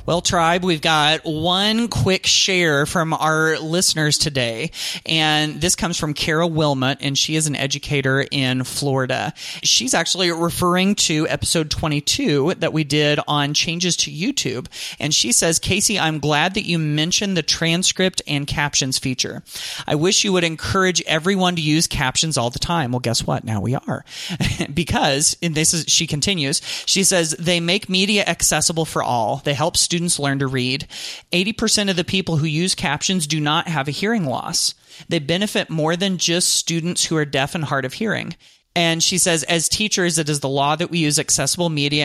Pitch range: 145-175 Hz